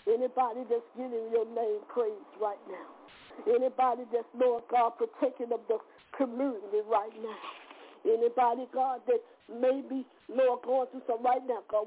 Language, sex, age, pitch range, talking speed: English, female, 50-69, 245-315 Hz, 150 wpm